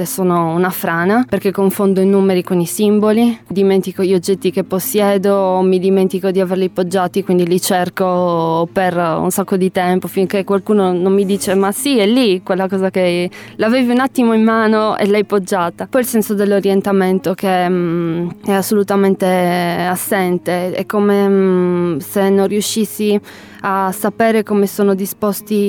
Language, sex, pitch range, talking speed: Italian, female, 185-205 Hz, 160 wpm